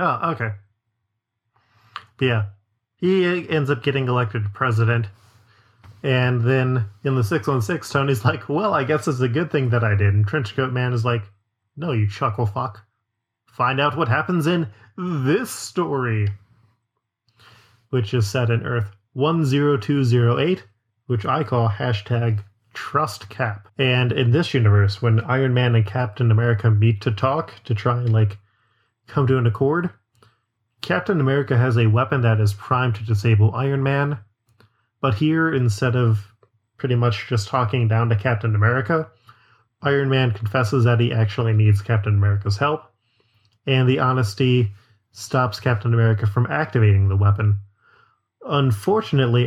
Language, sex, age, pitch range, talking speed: English, male, 20-39, 110-130 Hz, 145 wpm